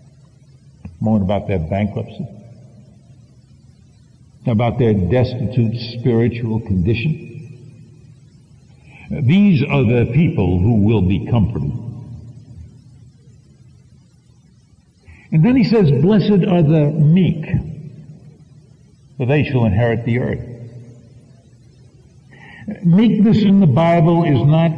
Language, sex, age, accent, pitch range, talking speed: English, male, 60-79, American, 120-150 Hz, 85 wpm